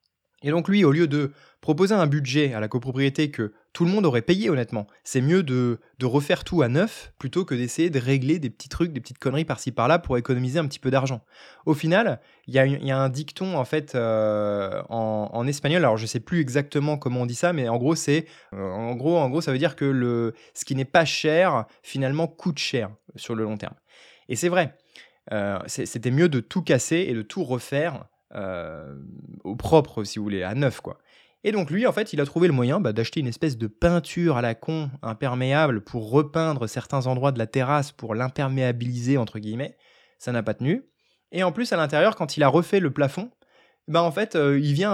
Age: 20-39